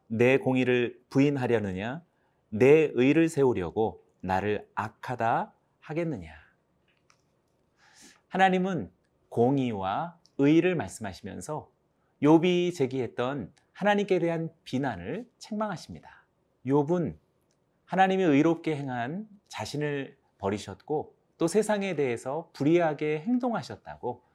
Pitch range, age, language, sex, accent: 120-180 Hz, 30-49, Korean, male, native